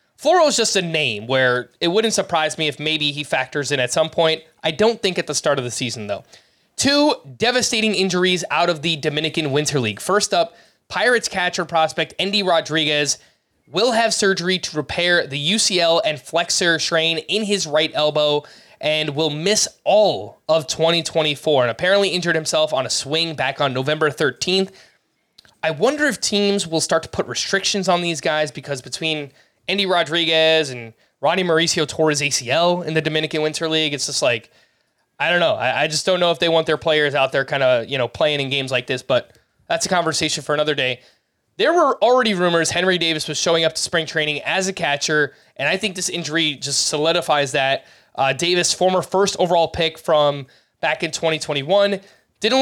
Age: 20-39